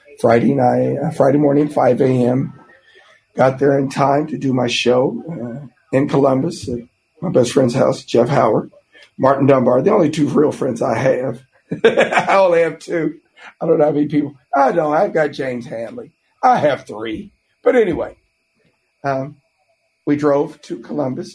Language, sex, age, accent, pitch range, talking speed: English, male, 50-69, American, 125-150 Hz, 170 wpm